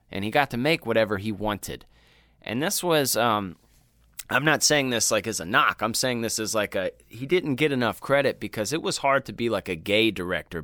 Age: 30-49